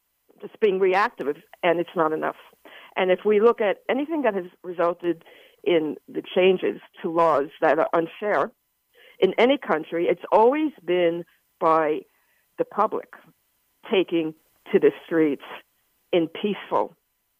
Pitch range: 170-225 Hz